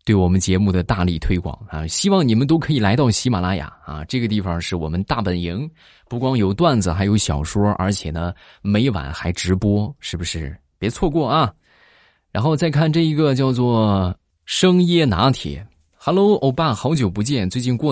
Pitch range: 85-125 Hz